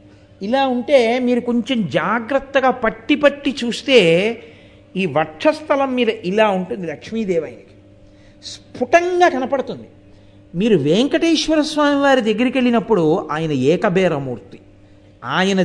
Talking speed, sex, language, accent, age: 95 wpm, male, Telugu, native, 50-69